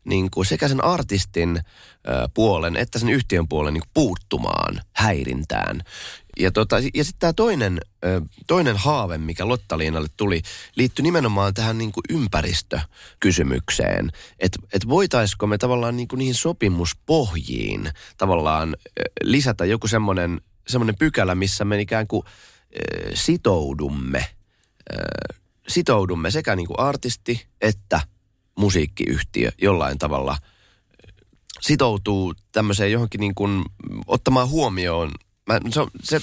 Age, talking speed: 30-49, 110 wpm